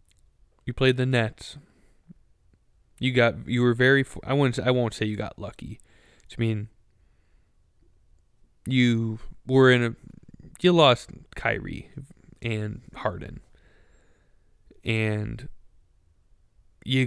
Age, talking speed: 20-39, 110 wpm